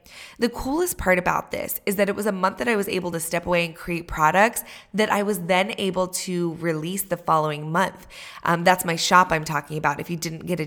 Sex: female